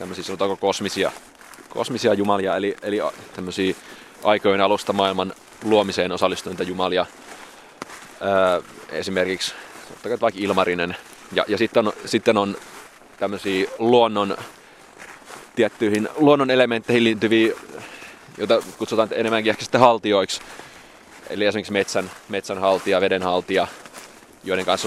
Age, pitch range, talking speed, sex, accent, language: 20-39, 90-105 Hz, 100 wpm, male, native, Finnish